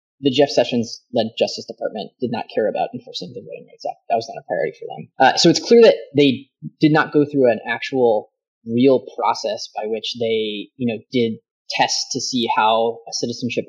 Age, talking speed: 20-39, 205 wpm